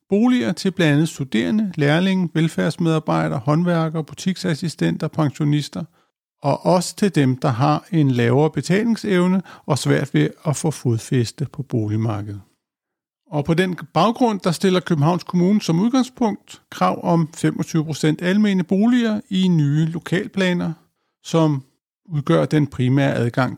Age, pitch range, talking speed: 50-69, 140-185 Hz, 125 wpm